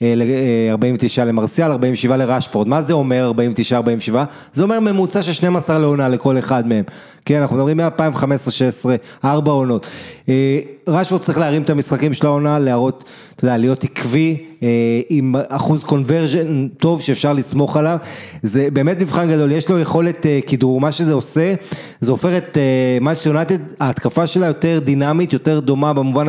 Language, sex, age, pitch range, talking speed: English, male, 30-49, 130-160 Hz, 160 wpm